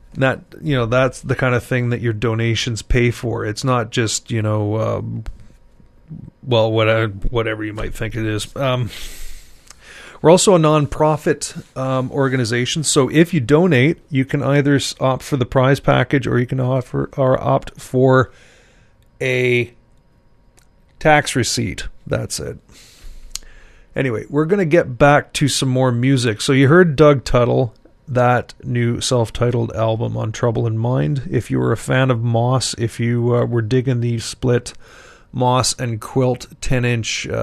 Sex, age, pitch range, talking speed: male, 30-49, 115-135 Hz, 160 wpm